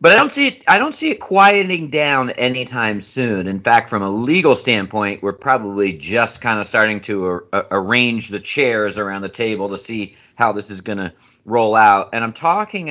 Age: 40-59